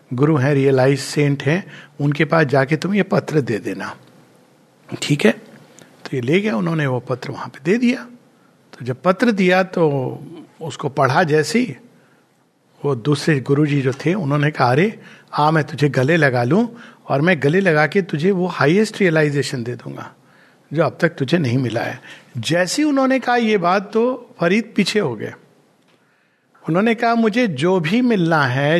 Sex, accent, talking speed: male, native, 175 wpm